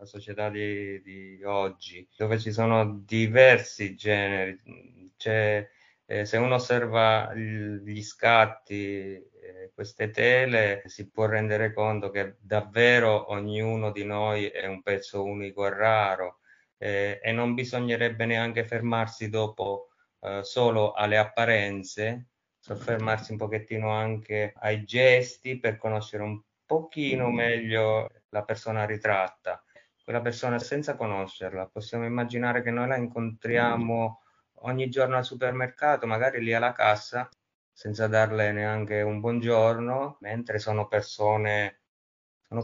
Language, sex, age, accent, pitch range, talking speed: Italian, male, 30-49, native, 105-120 Hz, 120 wpm